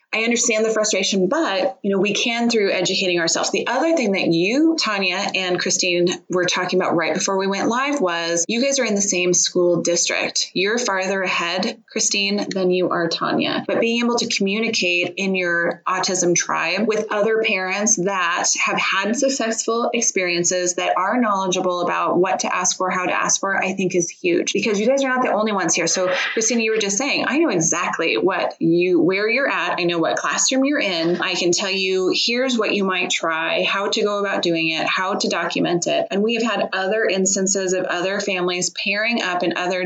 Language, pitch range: English, 180-220 Hz